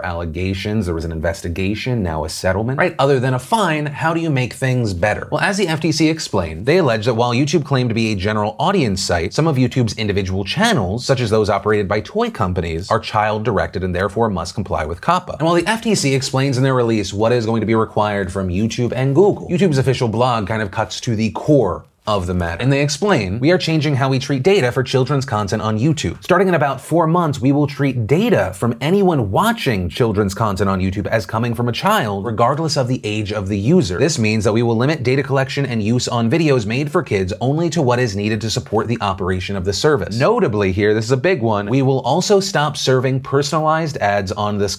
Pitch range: 105-140 Hz